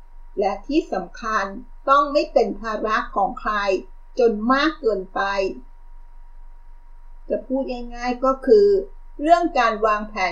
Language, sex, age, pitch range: Thai, female, 50-69, 205-270 Hz